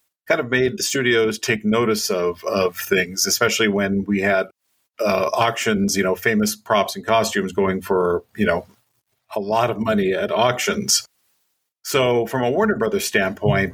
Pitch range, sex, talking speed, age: 100-125 Hz, male, 165 wpm, 40-59